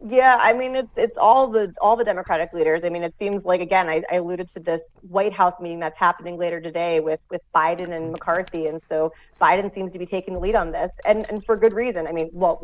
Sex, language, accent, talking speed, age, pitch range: female, English, American, 250 wpm, 30-49, 170-195 Hz